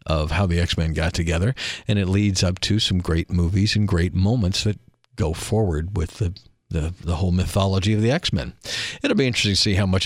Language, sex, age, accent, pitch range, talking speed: English, male, 50-69, American, 85-105 Hz, 215 wpm